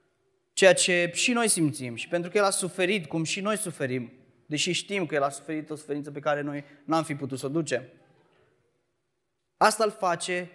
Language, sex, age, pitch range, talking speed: Romanian, male, 20-39, 145-200 Hz, 200 wpm